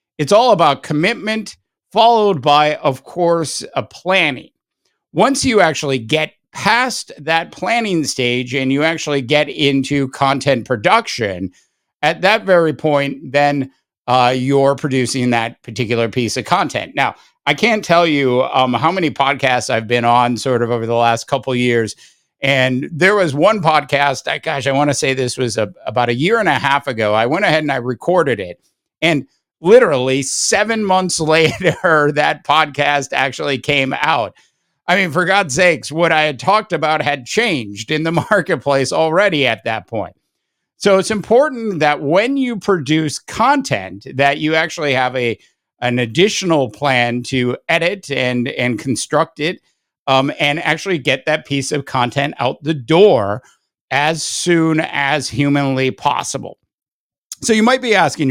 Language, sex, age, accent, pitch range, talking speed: English, male, 50-69, American, 130-170 Hz, 160 wpm